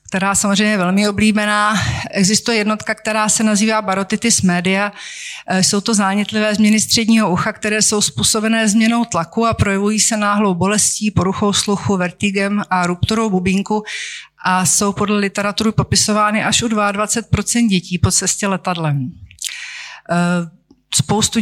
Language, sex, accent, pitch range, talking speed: Czech, female, native, 175-210 Hz, 130 wpm